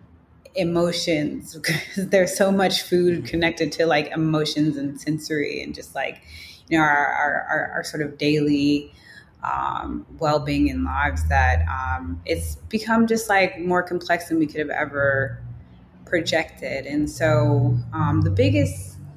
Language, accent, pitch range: English, American, 130-170 Hz